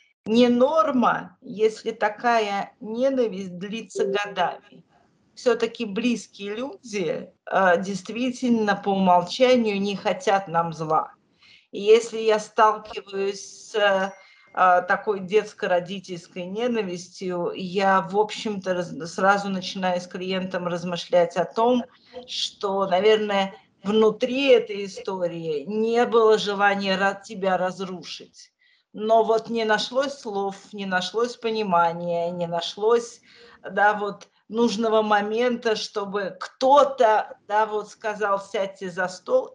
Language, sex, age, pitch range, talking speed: Russian, female, 40-59, 195-235 Hz, 105 wpm